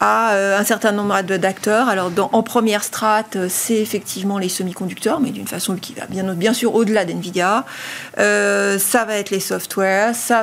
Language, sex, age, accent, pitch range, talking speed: French, female, 40-59, French, 195-245 Hz, 185 wpm